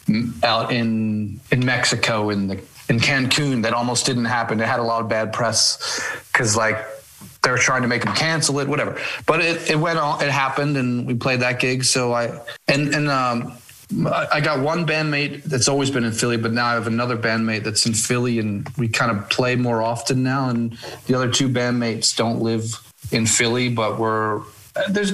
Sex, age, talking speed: male, 30-49, 200 wpm